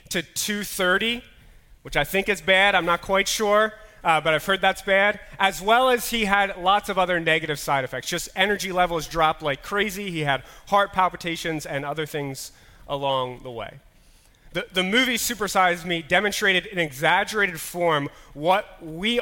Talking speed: 170 wpm